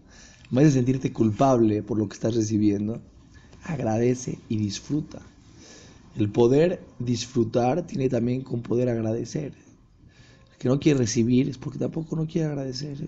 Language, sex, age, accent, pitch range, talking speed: Spanish, male, 30-49, Mexican, 115-155 Hz, 140 wpm